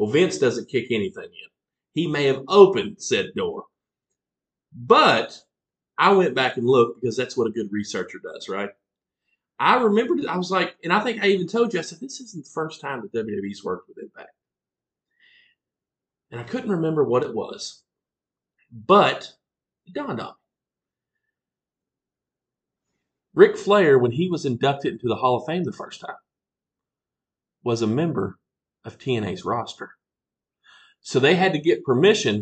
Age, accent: 40-59, American